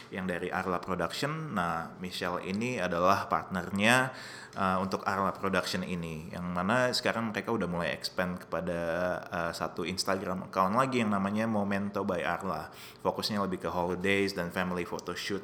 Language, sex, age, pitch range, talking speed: Indonesian, male, 20-39, 90-105 Hz, 150 wpm